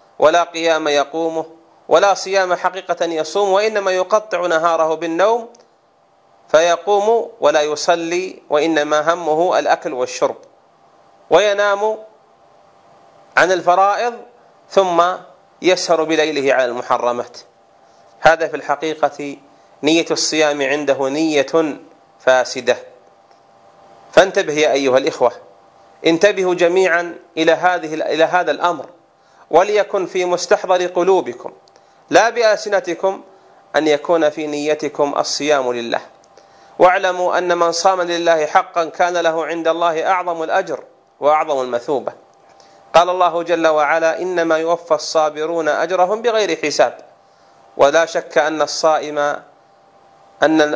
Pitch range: 150-185 Hz